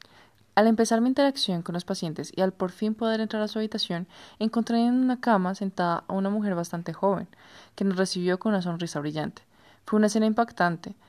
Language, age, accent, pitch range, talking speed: Spanish, 20-39, Colombian, 175-215 Hz, 200 wpm